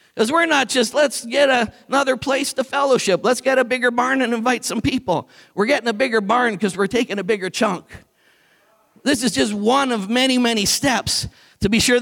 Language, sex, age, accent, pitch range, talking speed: English, male, 50-69, American, 225-290 Hz, 210 wpm